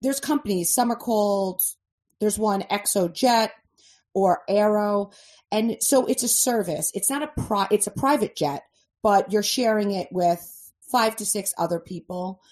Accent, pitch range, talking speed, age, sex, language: American, 170-215 Hz, 155 wpm, 30-49, female, English